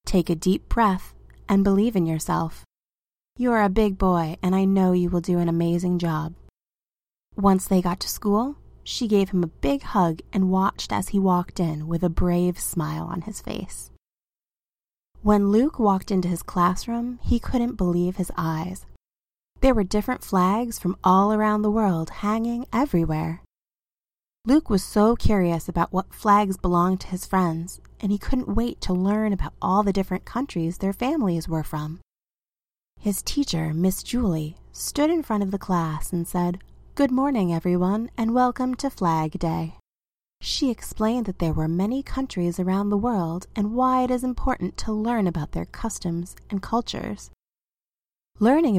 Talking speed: 170 wpm